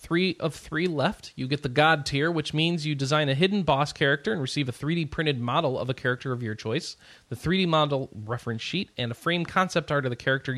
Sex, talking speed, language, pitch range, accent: male, 240 wpm, English, 115-165 Hz, American